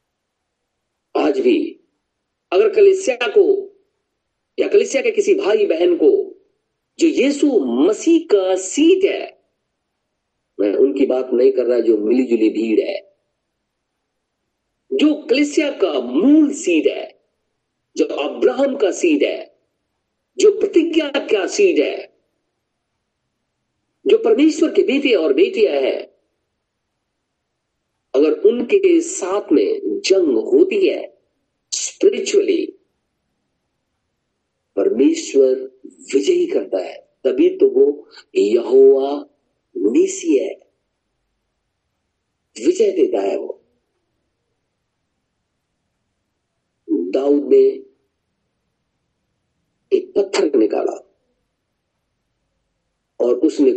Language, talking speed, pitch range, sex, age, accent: Hindi, 85 wpm, 340-405 Hz, male, 50-69, native